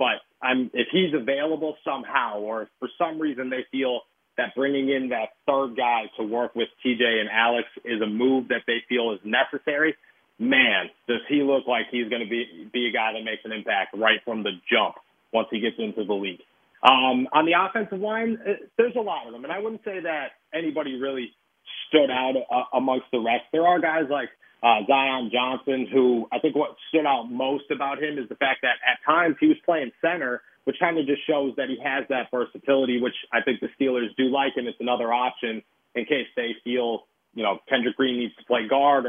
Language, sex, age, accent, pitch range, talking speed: English, male, 30-49, American, 120-145 Hz, 220 wpm